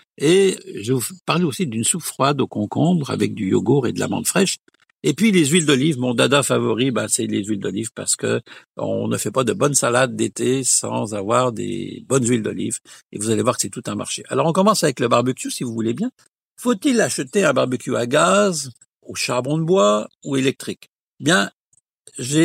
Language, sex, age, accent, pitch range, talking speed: French, male, 60-79, French, 115-150 Hz, 215 wpm